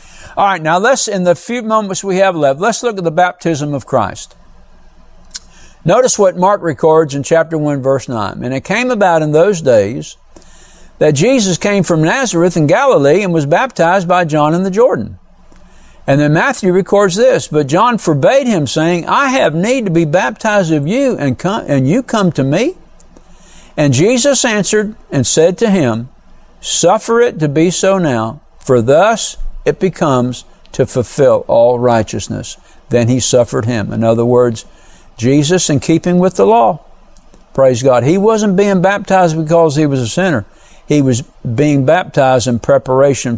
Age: 60-79